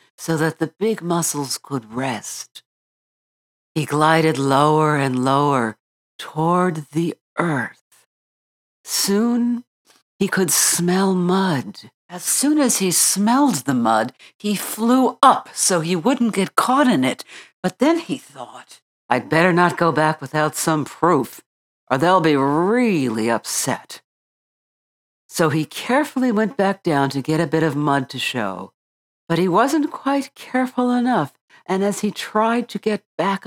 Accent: American